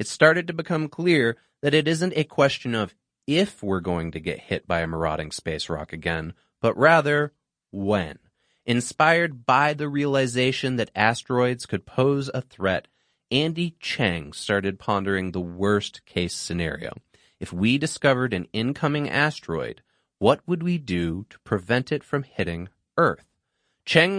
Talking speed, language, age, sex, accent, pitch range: 150 wpm, English, 30-49, male, American, 95-150 Hz